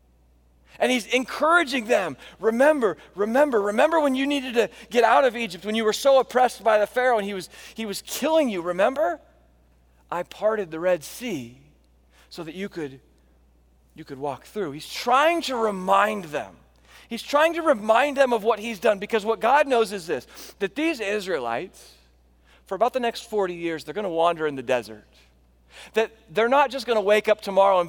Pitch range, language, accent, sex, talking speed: 140-230 Hz, English, American, male, 195 wpm